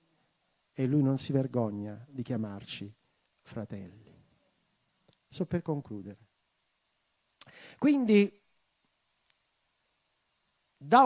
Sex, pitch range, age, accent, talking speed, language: male, 135-210 Hz, 50-69, native, 70 wpm, Italian